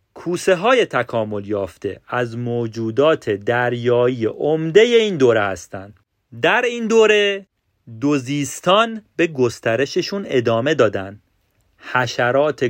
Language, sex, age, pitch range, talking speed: Persian, male, 40-59, 105-145 Hz, 95 wpm